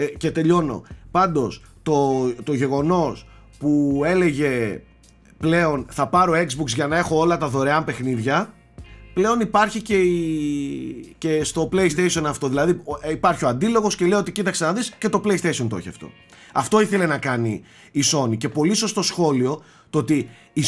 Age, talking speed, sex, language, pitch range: 30-49, 165 wpm, male, Greek, 135-185 Hz